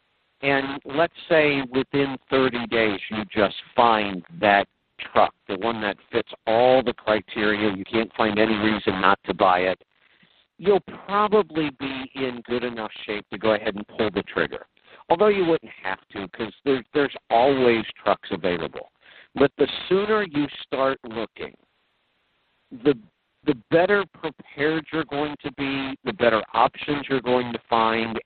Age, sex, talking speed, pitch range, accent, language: 50-69, male, 155 wpm, 110-150 Hz, American, English